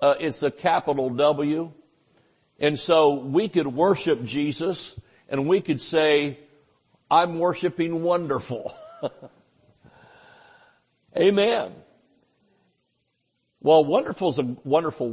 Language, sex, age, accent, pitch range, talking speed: English, male, 60-79, American, 130-170 Hz, 95 wpm